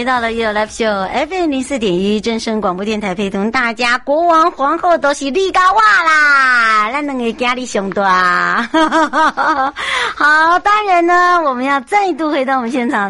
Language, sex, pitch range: Chinese, male, 175-250 Hz